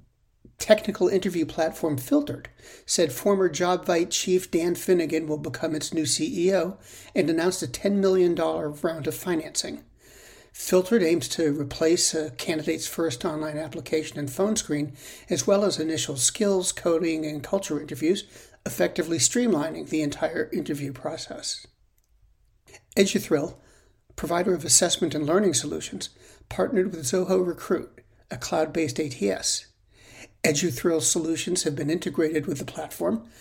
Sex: male